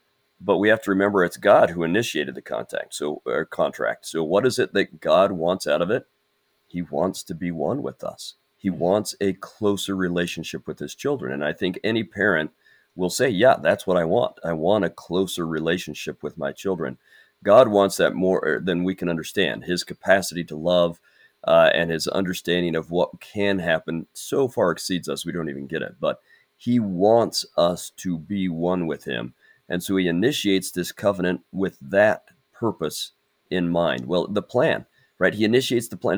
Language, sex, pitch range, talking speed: English, male, 85-100 Hz, 190 wpm